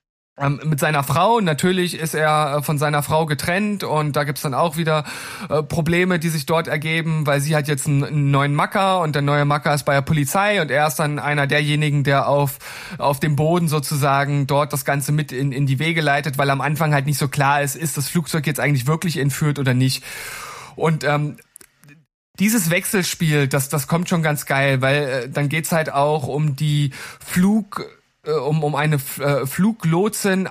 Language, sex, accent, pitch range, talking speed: German, male, German, 145-180 Hz, 200 wpm